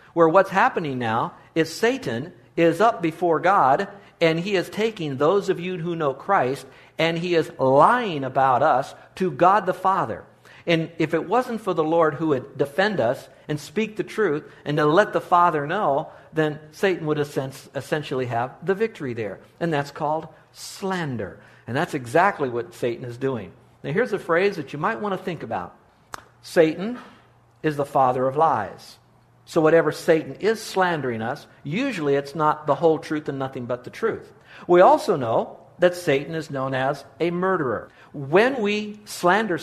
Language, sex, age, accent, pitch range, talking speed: English, male, 60-79, American, 140-190 Hz, 175 wpm